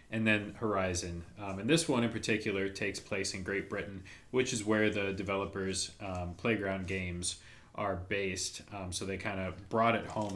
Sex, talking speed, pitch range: male, 185 wpm, 95-115 Hz